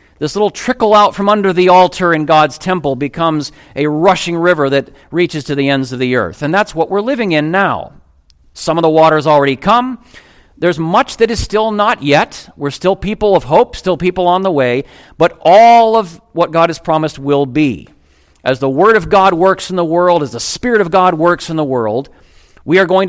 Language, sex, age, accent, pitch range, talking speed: English, male, 50-69, American, 150-210 Hz, 215 wpm